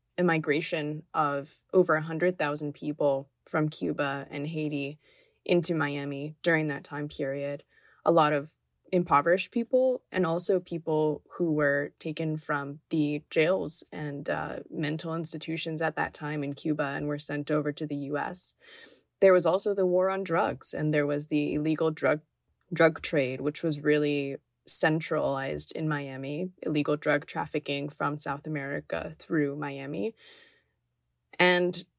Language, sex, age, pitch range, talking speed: English, female, 20-39, 145-175 Hz, 145 wpm